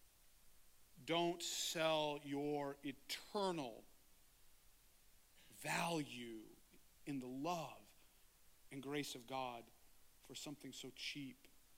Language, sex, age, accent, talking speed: English, male, 40-59, American, 80 wpm